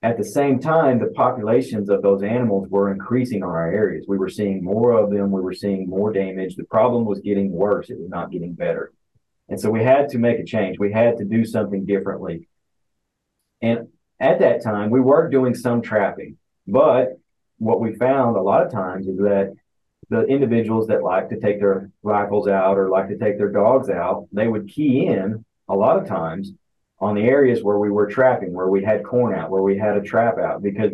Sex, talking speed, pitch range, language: male, 215 wpm, 100-120 Hz, English